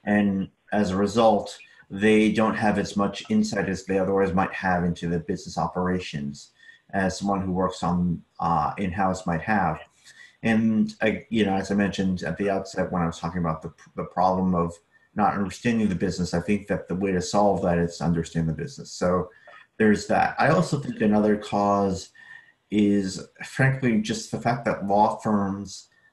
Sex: male